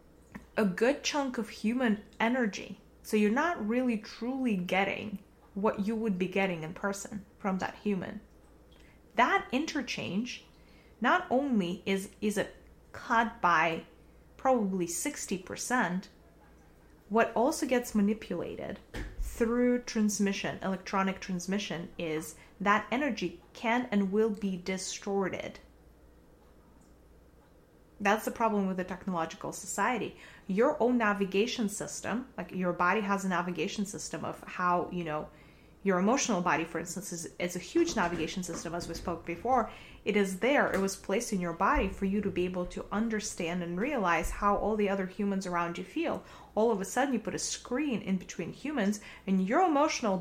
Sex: female